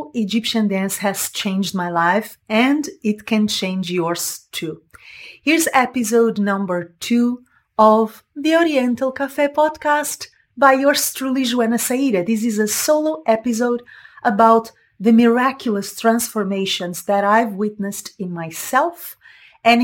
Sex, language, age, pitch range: female, English, 30-49, 195-250 Hz